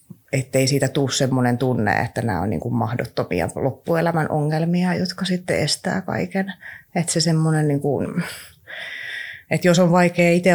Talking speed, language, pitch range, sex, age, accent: 150 wpm, Finnish, 140-175 Hz, female, 30-49, native